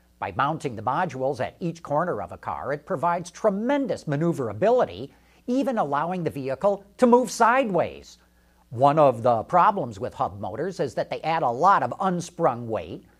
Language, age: English, 50-69